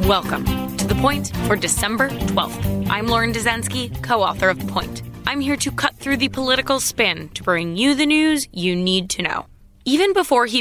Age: 20-39